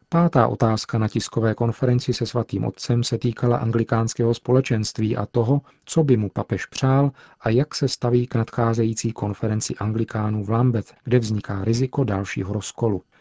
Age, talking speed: 40-59, 155 wpm